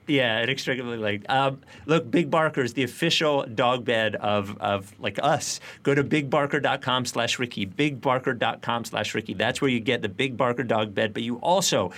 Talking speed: 185 wpm